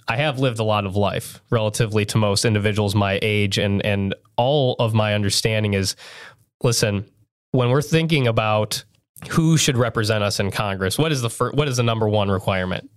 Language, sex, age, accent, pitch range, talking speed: English, male, 20-39, American, 100-120 Hz, 190 wpm